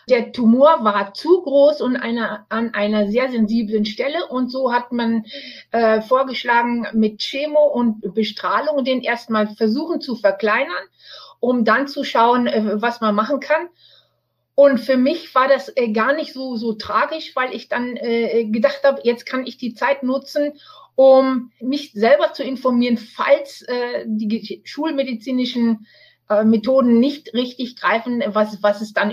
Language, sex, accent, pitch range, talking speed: German, female, German, 220-275 Hz, 155 wpm